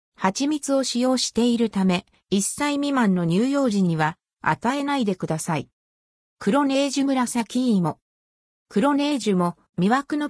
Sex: female